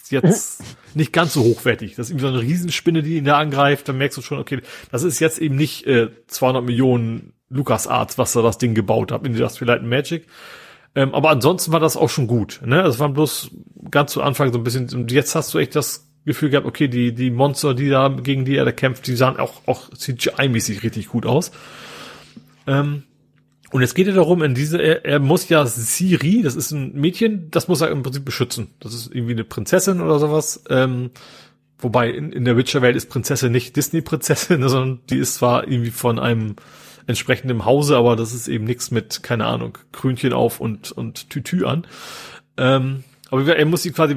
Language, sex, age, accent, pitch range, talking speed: German, male, 30-49, German, 120-155 Hz, 210 wpm